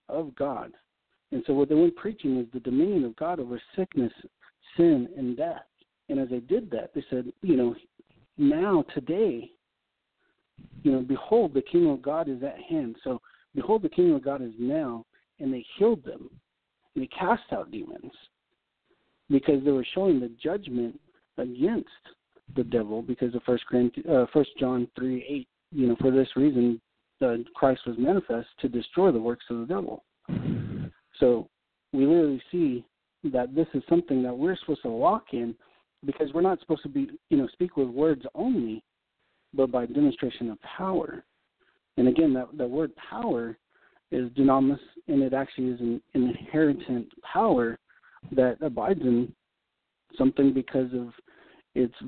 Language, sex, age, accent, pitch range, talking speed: English, male, 60-79, American, 125-165 Hz, 165 wpm